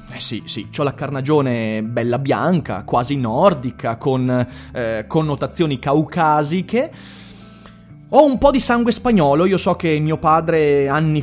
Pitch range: 120-155 Hz